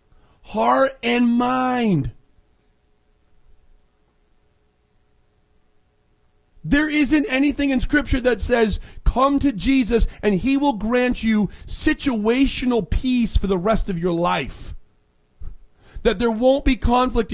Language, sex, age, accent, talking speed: English, male, 40-59, American, 105 wpm